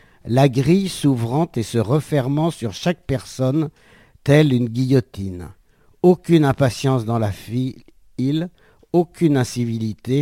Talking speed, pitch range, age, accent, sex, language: 115 wpm, 120-155 Hz, 50-69, French, male, French